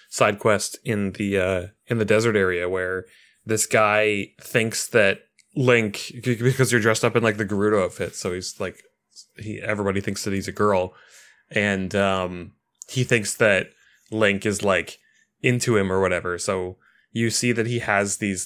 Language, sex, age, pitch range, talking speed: English, male, 20-39, 100-120 Hz, 170 wpm